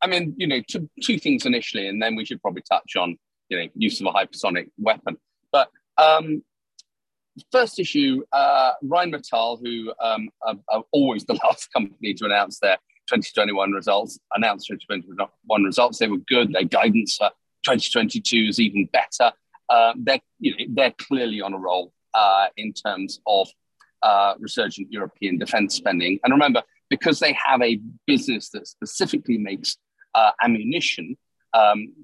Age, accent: 40-59, British